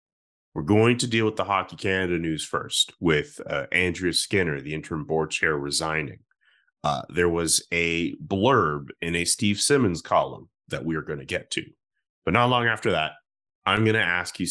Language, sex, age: English, male, 30-49